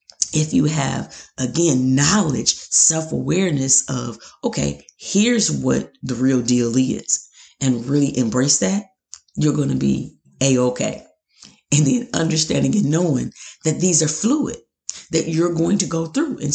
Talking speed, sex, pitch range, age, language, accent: 145 wpm, female, 125-170 Hz, 40-59, English, American